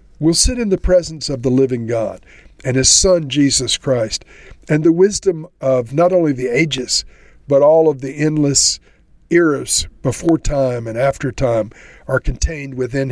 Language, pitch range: English, 125-155 Hz